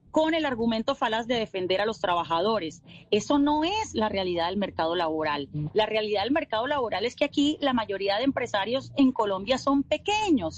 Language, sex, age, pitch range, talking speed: Spanish, female, 30-49, 220-290 Hz, 185 wpm